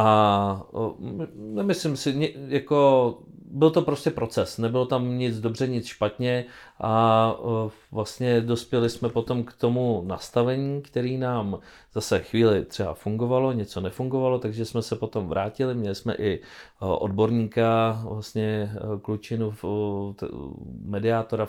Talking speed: 120 wpm